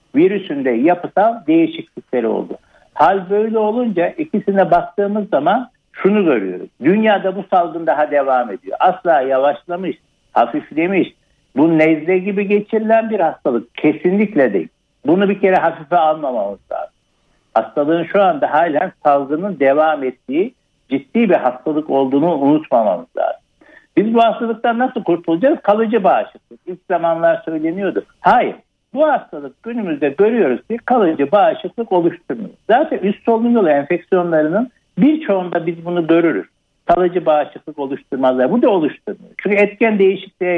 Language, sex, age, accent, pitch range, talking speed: Turkish, male, 60-79, native, 165-230 Hz, 125 wpm